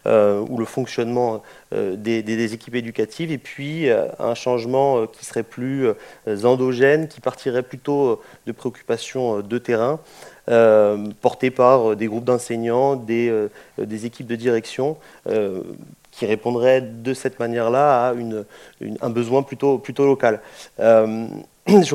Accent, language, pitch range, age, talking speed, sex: French, French, 115-140 Hz, 30-49, 150 wpm, male